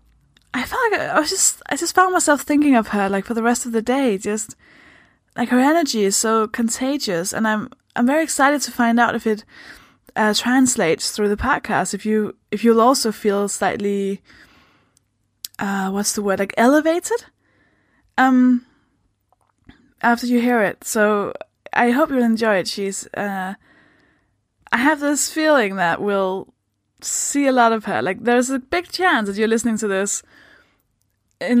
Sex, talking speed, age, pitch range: female, 165 wpm, 10-29, 200-260 Hz